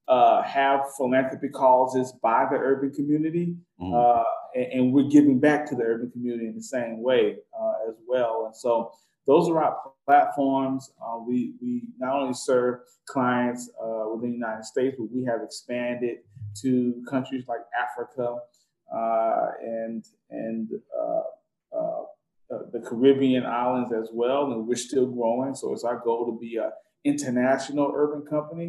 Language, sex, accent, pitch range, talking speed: English, male, American, 115-145 Hz, 160 wpm